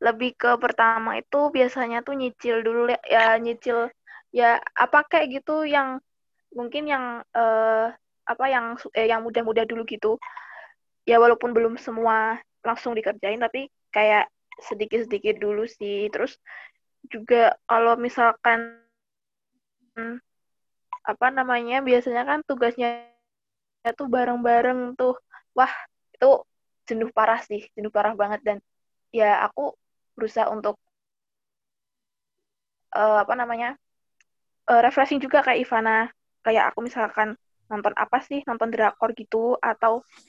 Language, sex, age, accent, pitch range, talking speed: Indonesian, female, 20-39, native, 225-250 Hz, 120 wpm